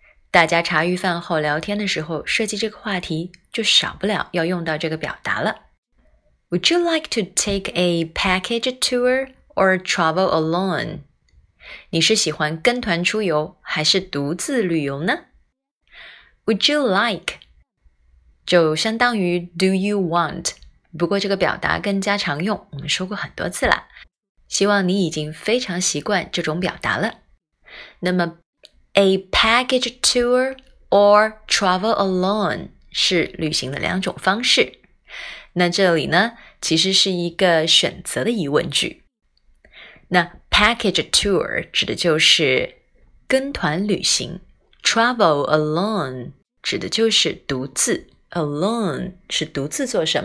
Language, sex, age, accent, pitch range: Chinese, female, 20-39, native, 165-215 Hz